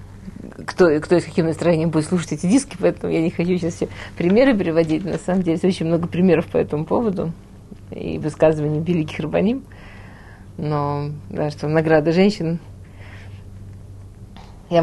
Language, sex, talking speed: Russian, female, 155 wpm